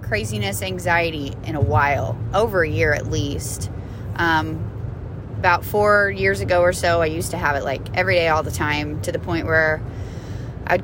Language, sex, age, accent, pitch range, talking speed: English, female, 20-39, American, 105-135 Hz, 185 wpm